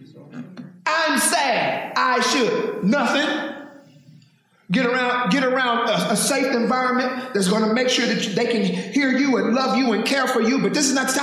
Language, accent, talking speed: English, American, 190 wpm